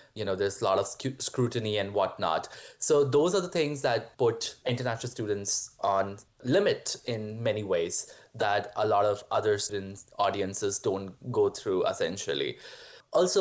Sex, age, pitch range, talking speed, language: male, 20-39, 110-160 Hz, 155 wpm, English